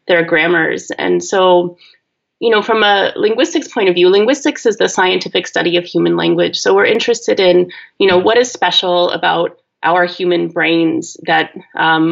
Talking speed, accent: 175 wpm, American